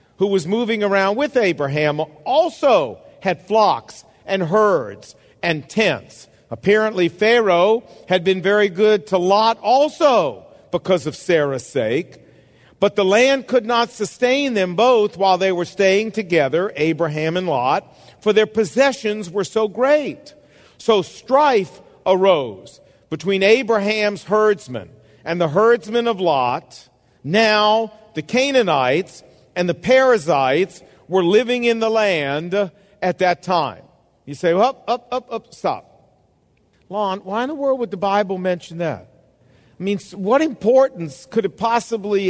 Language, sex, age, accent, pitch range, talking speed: English, male, 50-69, American, 170-225 Hz, 140 wpm